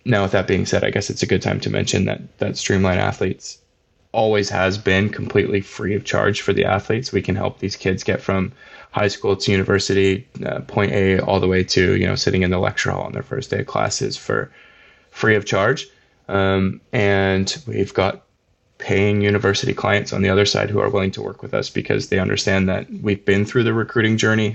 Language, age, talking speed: English, 20-39, 220 wpm